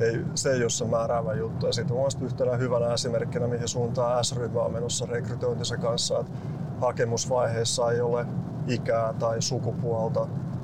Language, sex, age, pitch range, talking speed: Finnish, male, 30-49, 120-145 Hz, 150 wpm